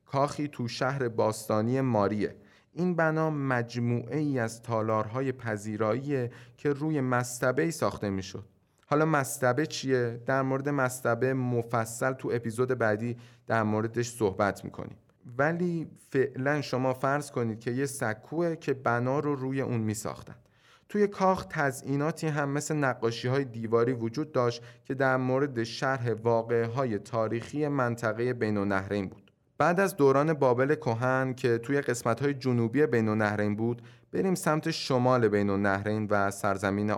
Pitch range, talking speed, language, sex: 110-140 Hz, 145 wpm, Persian, male